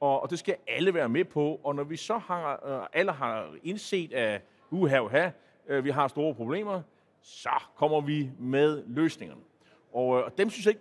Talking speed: 170 wpm